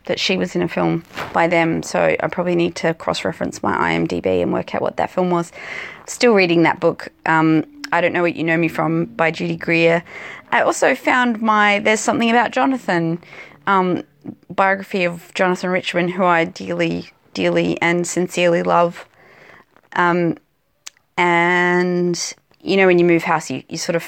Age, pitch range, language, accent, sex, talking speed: 20-39, 165-185 Hz, English, Australian, female, 175 wpm